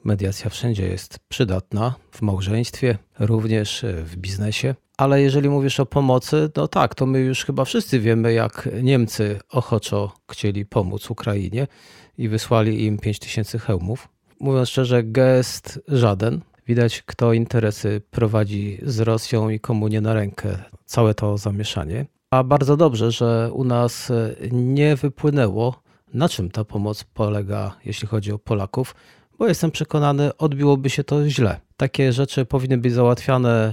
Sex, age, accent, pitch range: male, 40-59, native, 105-135 Hz